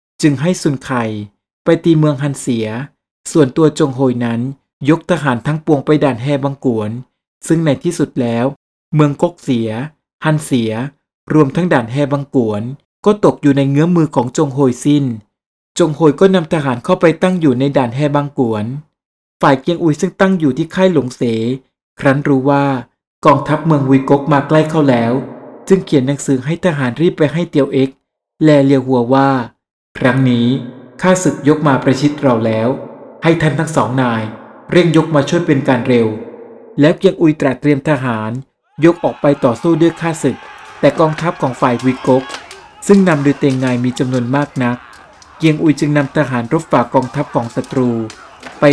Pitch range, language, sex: 130-160 Hz, Thai, male